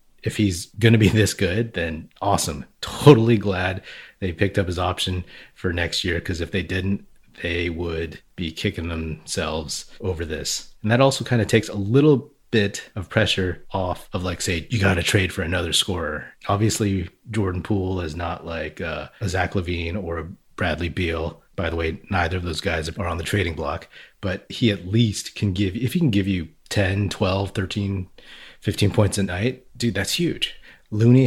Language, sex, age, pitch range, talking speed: English, male, 30-49, 90-110 Hz, 185 wpm